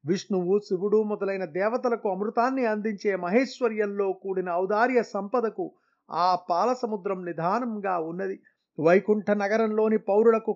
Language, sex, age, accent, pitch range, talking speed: Telugu, male, 30-49, native, 185-230 Hz, 95 wpm